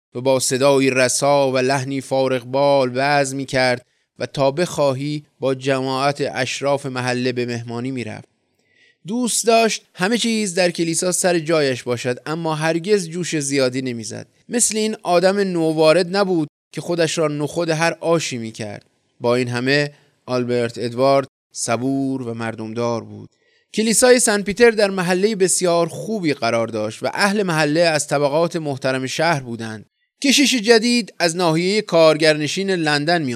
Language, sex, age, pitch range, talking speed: Persian, male, 30-49, 135-180 Hz, 150 wpm